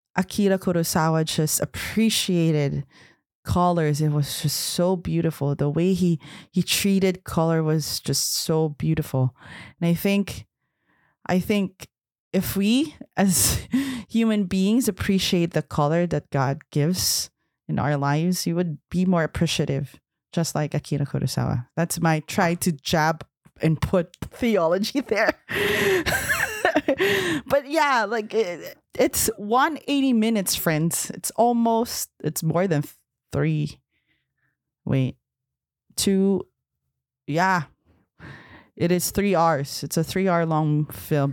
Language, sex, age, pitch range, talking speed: English, female, 30-49, 150-195 Hz, 120 wpm